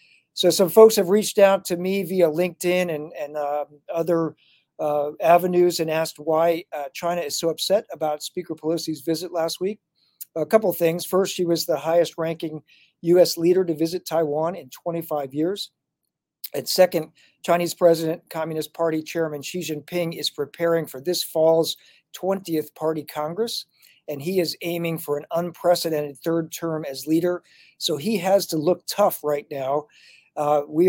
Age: 50-69